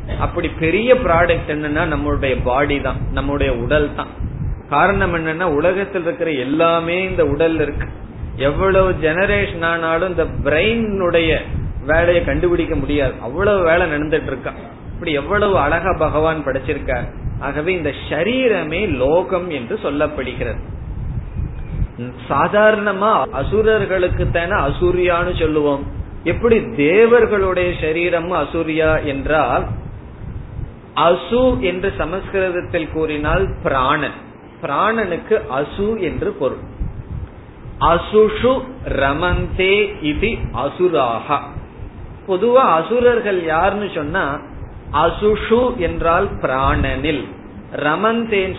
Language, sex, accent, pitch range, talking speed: Tamil, male, native, 145-195 Hz, 80 wpm